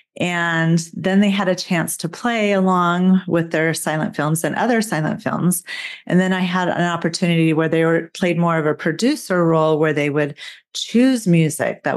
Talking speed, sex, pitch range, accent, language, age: 190 wpm, female, 160-200 Hz, American, English, 40-59